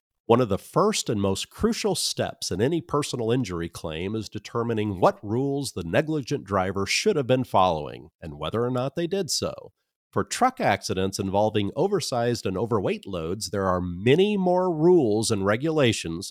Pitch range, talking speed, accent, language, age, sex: 100-145 Hz, 170 wpm, American, English, 40-59, male